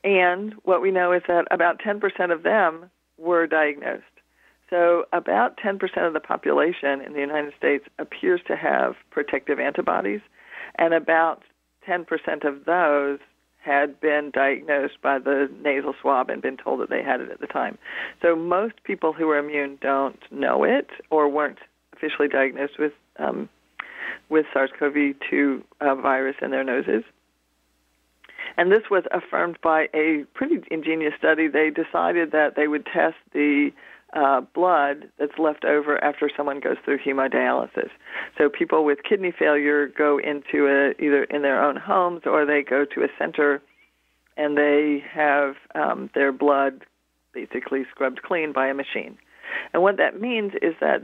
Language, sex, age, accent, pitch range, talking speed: English, female, 50-69, American, 140-165 Hz, 155 wpm